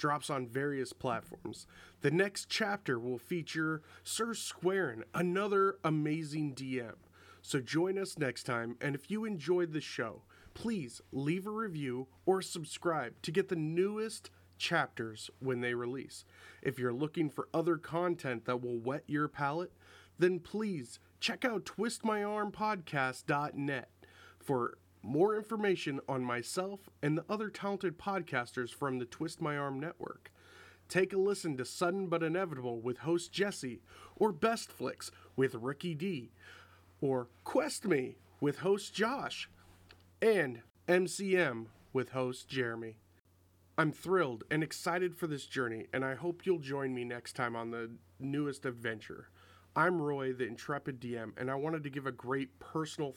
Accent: American